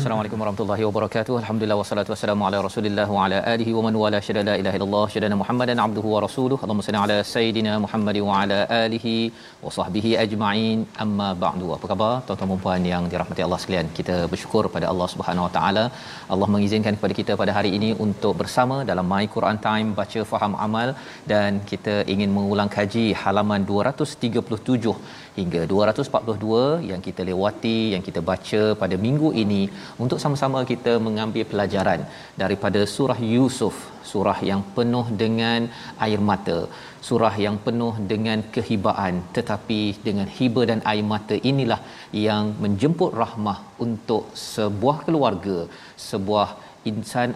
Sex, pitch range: male, 100-115 Hz